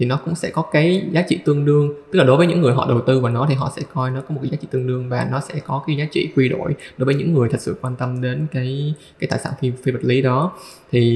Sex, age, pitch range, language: male, 20-39, 130-160 Hz, Vietnamese